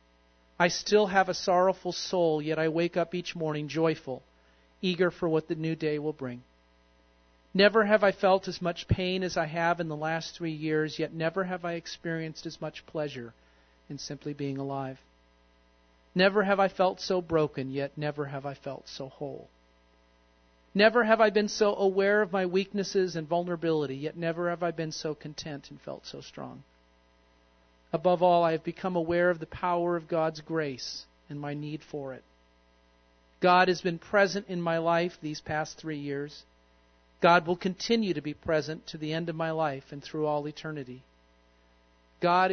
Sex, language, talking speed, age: male, English, 180 wpm, 40-59